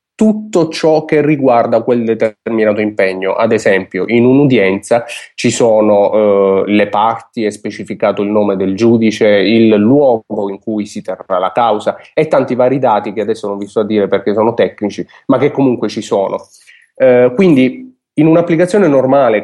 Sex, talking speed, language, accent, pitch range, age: male, 165 wpm, Italian, native, 105-145 Hz, 30-49